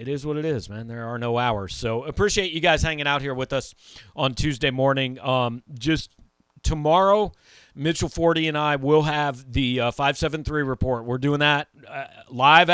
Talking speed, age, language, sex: 190 wpm, 40-59, English, male